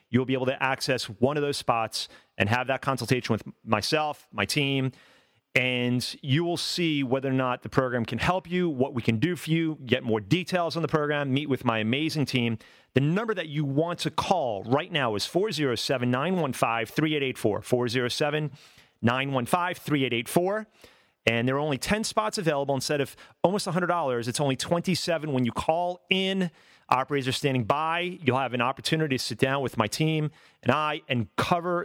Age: 40-59